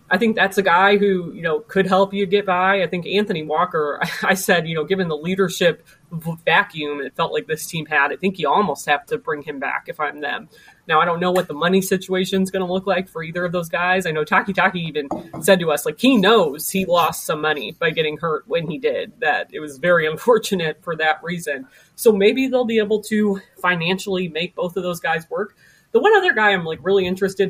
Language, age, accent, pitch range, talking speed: English, 30-49, American, 165-205 Hz, 240 wpm